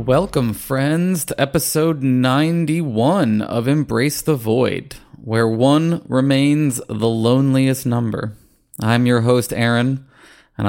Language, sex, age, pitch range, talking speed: English, male, 20-39, 100-120 Hz, 110 wpm